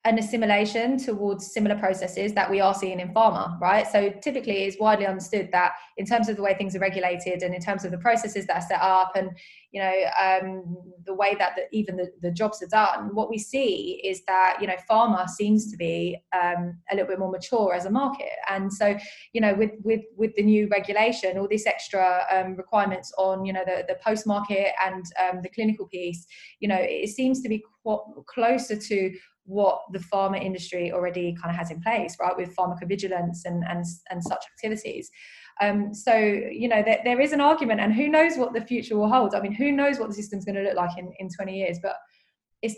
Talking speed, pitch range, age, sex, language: 220 wpm, 185-225 Hz, 20-39, female, English